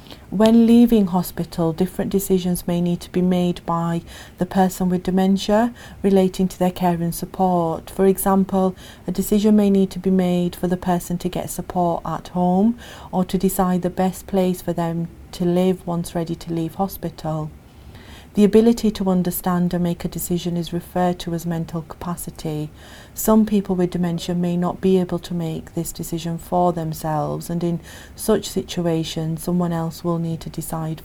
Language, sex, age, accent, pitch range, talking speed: English, female, 40-59, British, 170-190 Hz, 175 wpm